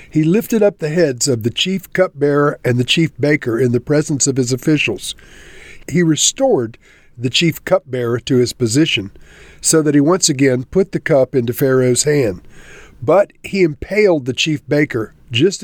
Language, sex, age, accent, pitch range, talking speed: English, male, 50-69, American, 125-160 Hz, 175 wpm